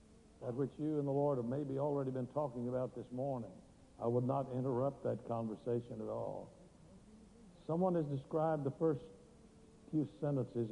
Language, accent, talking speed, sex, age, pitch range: English, American, 160 wpm, male, 60-79, 115-140 Hz